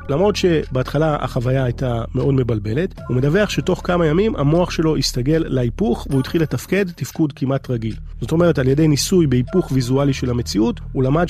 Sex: male